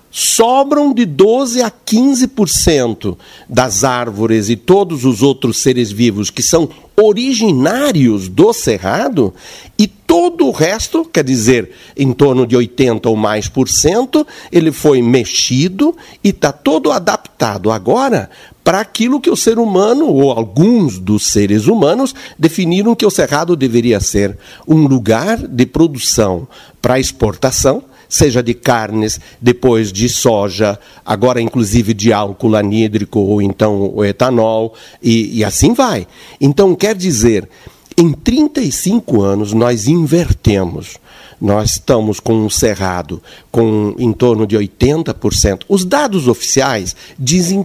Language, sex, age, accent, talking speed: Portuguese, male, 60-79, Brazilian, 130 wpm